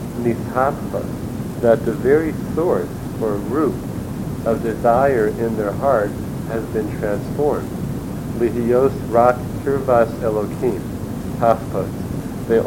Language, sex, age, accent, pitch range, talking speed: English, male, 50-69, American, 110-125 Hz, 70 wpm